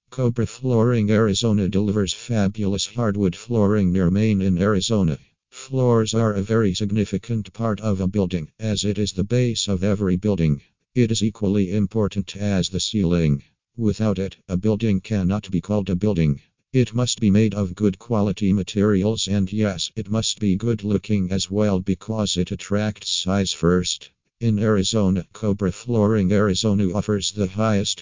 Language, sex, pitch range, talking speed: English, male, 95-110 Hz, 160 wpm